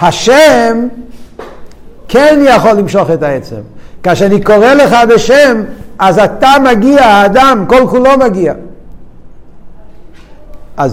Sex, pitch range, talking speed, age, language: male, 125-210 Hz, 105 wpm, 50-69, Hebrew